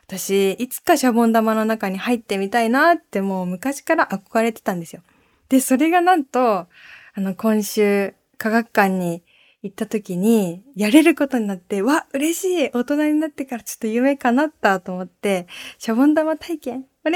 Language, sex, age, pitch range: Japanese, female, 20-39, 195-275 Hz